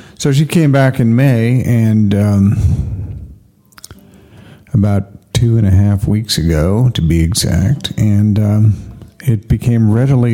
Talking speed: 135 wpm